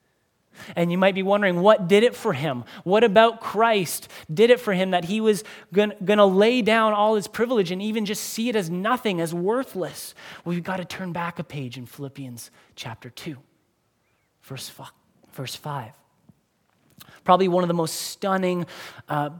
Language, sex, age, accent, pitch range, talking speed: English, male, 20-39, American, 160-205 Hz, 175 wpm